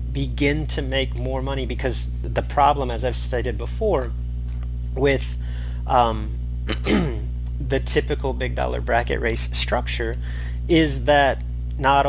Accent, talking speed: American, 120 wpm